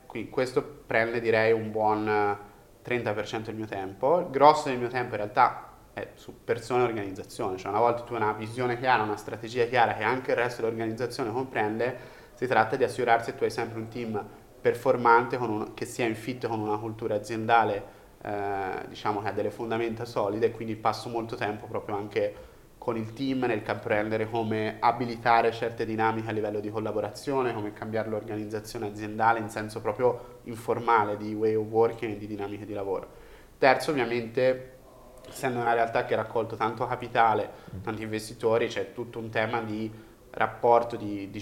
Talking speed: 175 wpm